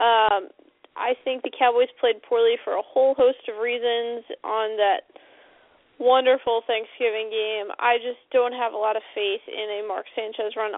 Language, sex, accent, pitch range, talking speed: English, female, American, 210-255 Hz, 165 wpm